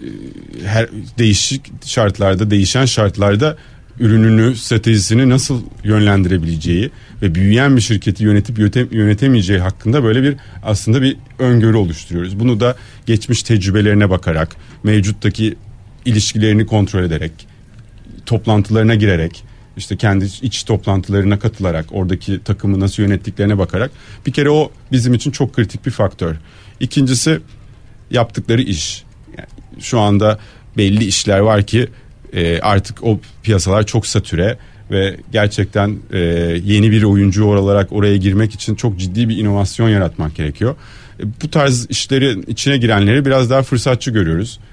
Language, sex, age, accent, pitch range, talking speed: Turkish, male, 40-59, native, 100-120 Hz, 120 wpm